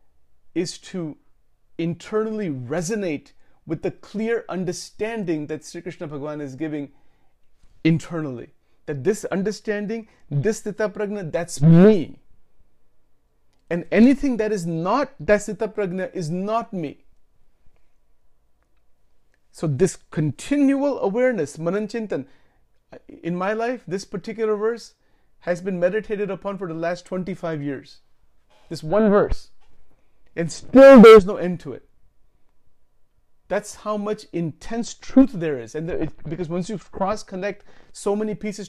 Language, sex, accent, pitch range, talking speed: English, male, Indian, 165-220 Hz, 125 wpm